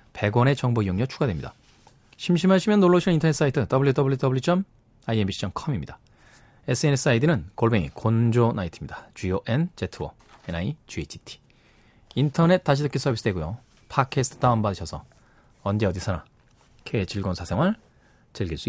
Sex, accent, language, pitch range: male, native, Korean, 110-155 Hz